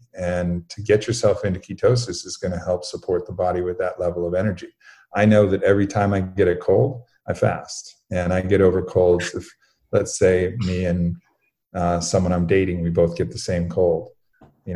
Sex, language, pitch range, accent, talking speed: male, English, 85-100 Hz, American, 205 wpm